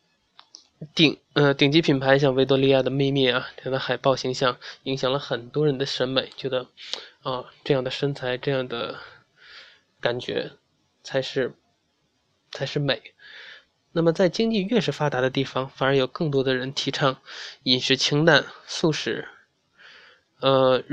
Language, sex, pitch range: Chinese, male, 135-155 Hz